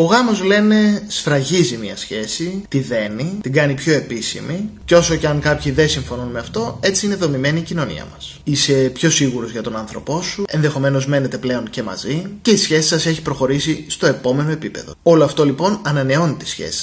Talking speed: 195 wpm